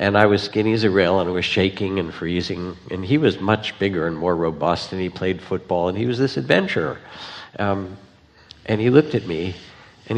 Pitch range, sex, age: 95-120 Hz, male, 60-79